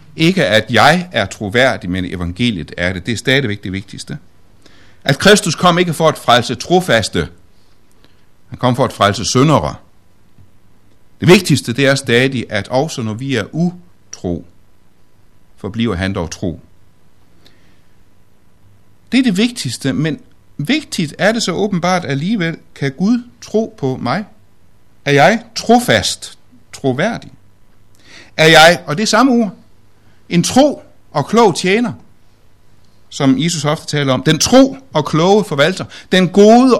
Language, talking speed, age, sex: Danish, 145 wpm, 60-79, male